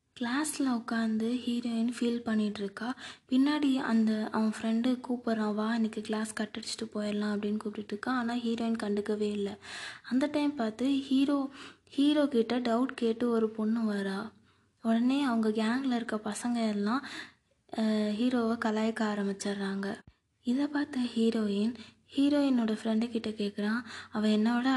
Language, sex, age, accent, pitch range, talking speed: Tamil, female, 20-39, native, 215-245 Hz, 125 wpm